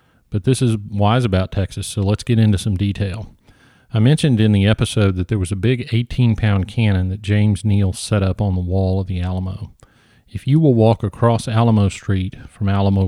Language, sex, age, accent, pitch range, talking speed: English, male, 40-59, American, 100-115 Hz, 200 wpm